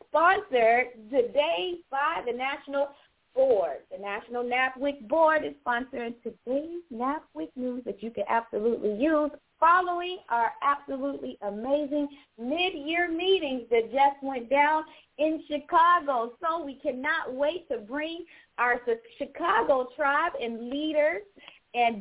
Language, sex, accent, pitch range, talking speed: English, female, American, 230-310 Hz, 120 wpm